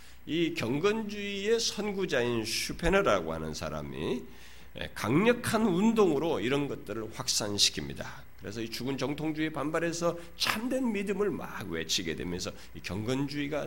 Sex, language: male, Korean